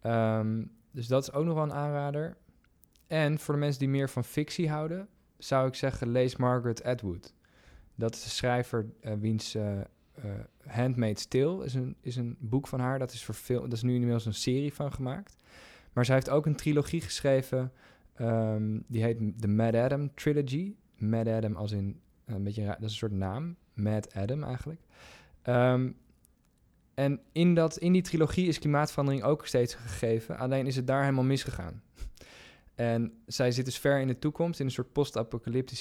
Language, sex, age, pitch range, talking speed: Dutch, male, 20-39, 110-140 Hz, 190 wpm